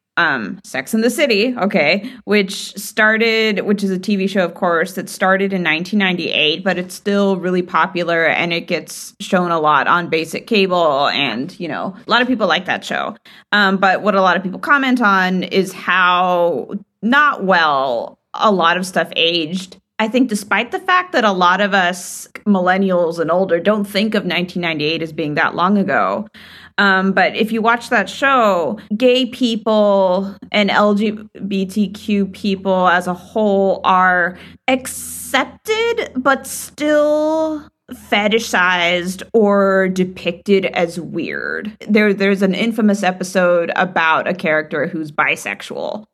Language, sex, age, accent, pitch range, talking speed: English, female, 30-49, American, 180-220 Hz, 150 wpm